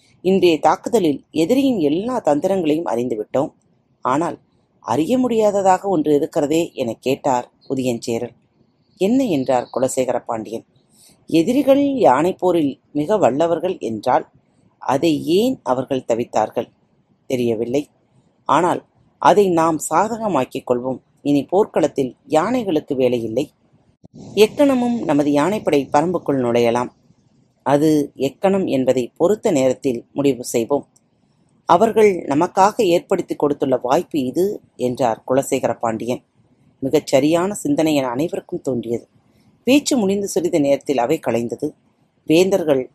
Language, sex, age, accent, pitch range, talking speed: Tamil, female, 30-49, native, 125-180 Hz, 100 wpm